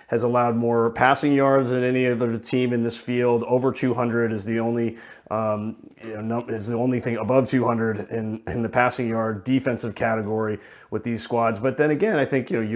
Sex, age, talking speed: male, 30-49, 200 wpm